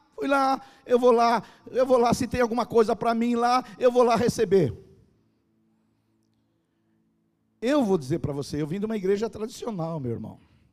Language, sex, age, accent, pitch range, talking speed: Portuguese, male, 50-69, Brazilian, 140-230 Hz, 180 wpm